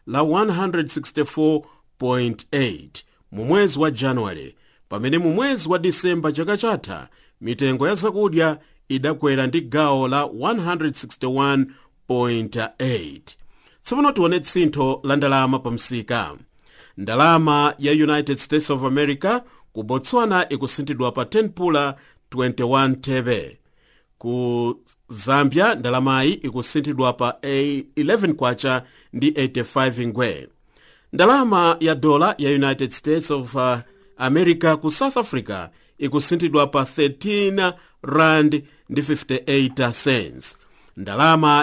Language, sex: English, male